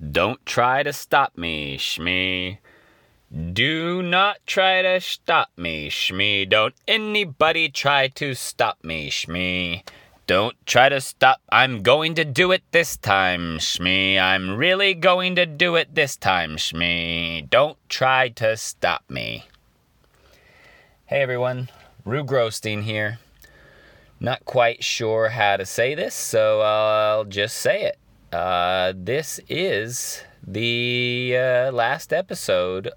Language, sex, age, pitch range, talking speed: English, male, 30-49, 95-130 Hz, 125 wpm